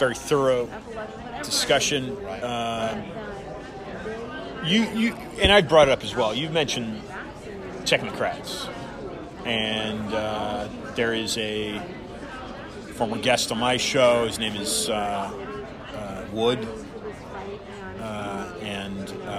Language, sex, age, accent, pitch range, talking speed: English, male, 30-49, American, 105-125 Hz, 105 wpm